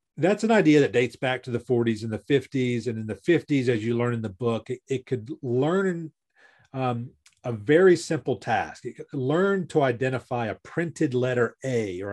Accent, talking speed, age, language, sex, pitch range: American, 200 wpm, 40-59, English, male, 115-150 Hz